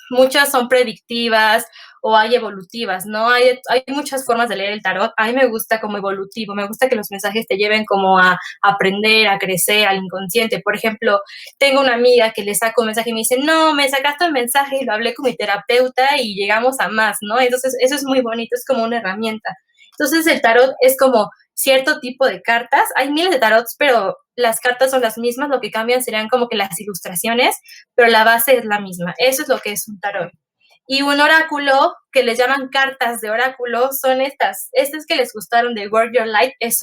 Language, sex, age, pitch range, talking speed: Spanish, female, 20-39, 215-255 Hz, 215 wpm